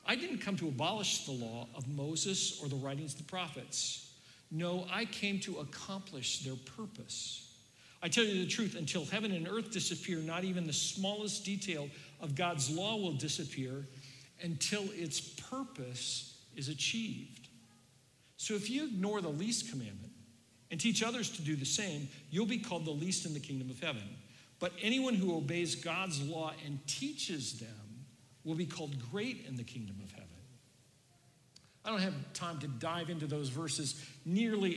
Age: 50-69